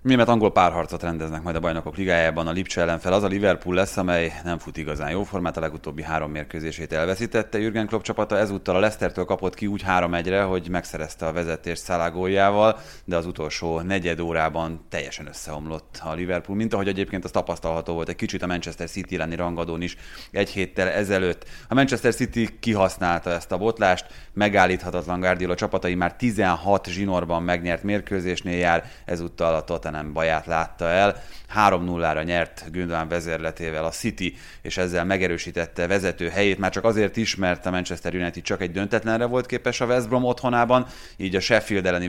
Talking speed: 175 wpm